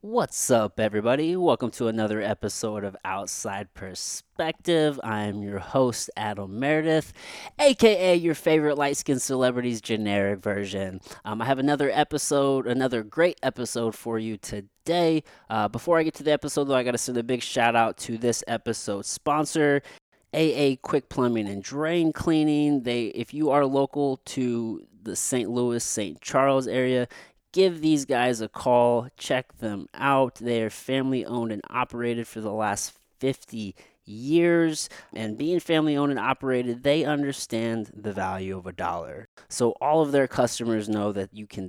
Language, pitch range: English, 105-140 Hz